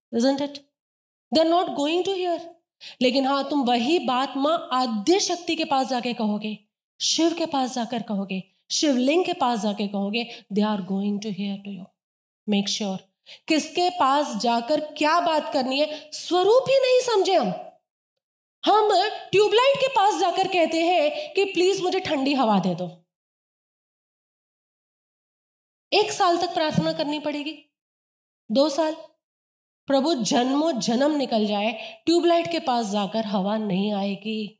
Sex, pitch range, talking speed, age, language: female, 215-325 Hz, 145 wpm, 30-49, Hindi